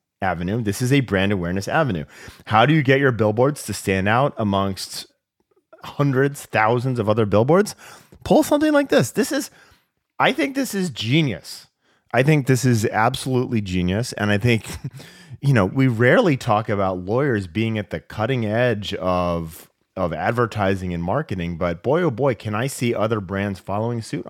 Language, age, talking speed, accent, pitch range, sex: English, 30-49, 175 wpm, American, 95-135 Hz, male